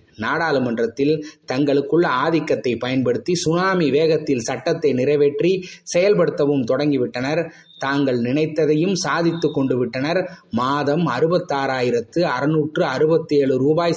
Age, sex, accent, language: 20-39, male, native, Tamil